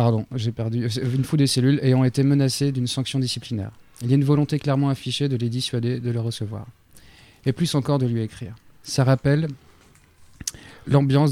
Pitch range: 115-135 Hz